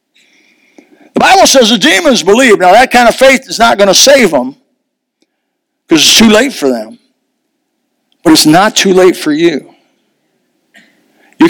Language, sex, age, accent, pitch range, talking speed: English, male, 60-79, American, 205-310 Hz, 160 wpm